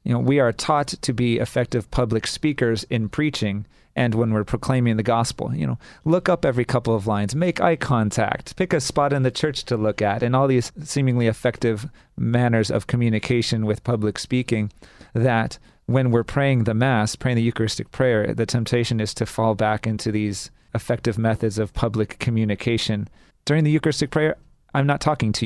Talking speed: 190 wpm